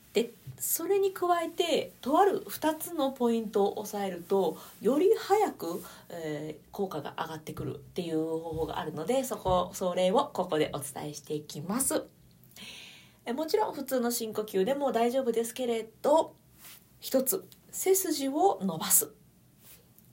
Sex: female